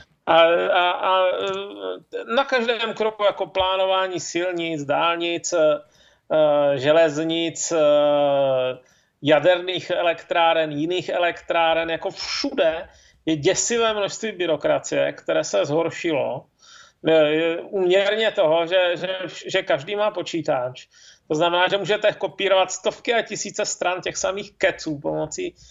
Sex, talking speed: male, 100 wpm